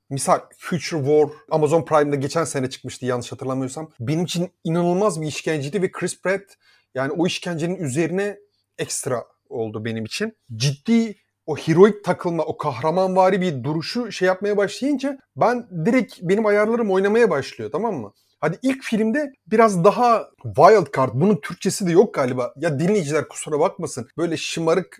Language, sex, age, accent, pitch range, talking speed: Turkish, male, 30-49, native, 140-195 Hz, 150 wpm